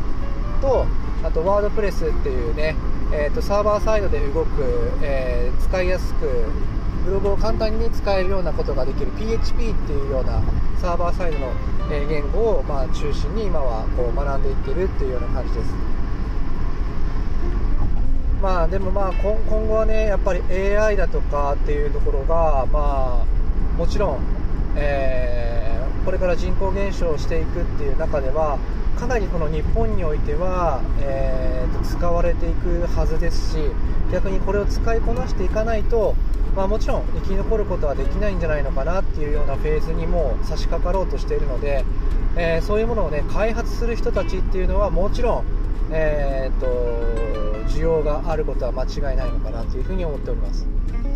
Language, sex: Japanese, male